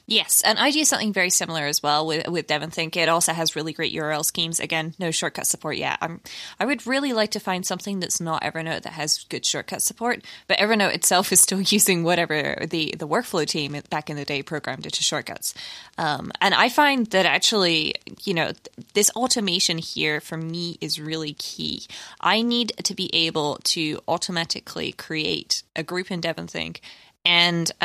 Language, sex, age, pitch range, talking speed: English, female, 20-39, 160-190 Hz, 190 wpm